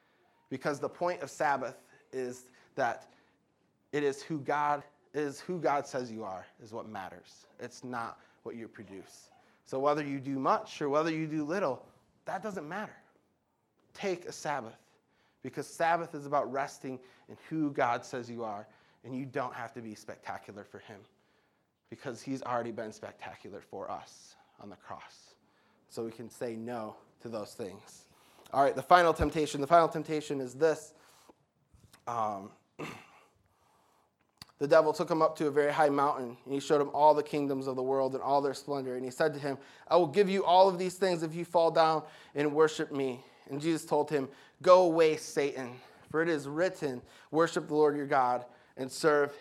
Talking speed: 185 wpm